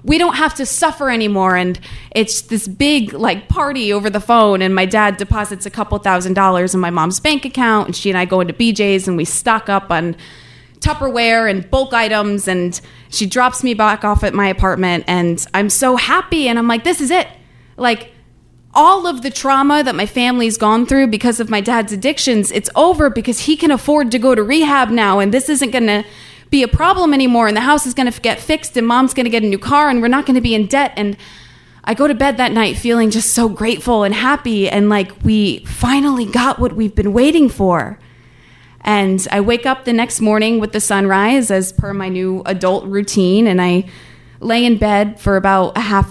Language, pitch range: English, 185-250 Hz